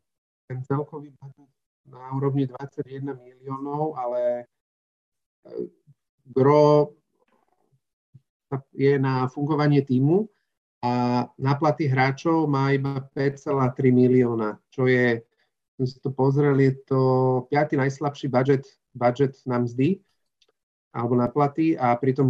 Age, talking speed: 40-59, 100 wpm